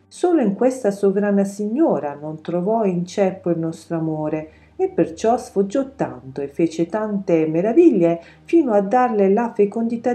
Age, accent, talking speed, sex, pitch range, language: 40-59, native, 150 wpm, female, 155-215 Hz, Italian